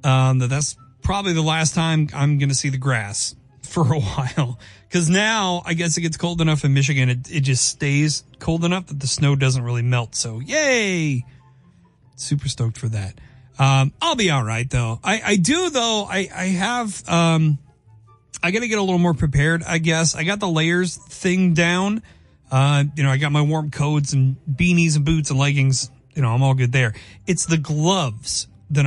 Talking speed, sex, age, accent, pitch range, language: 200 wpm, male, 30-49, American, 130-180 Hz, English